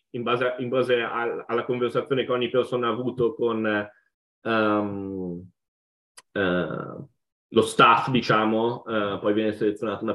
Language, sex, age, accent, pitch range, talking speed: Italian, male, 20-39, native, 105-125 Hz, 140 wpm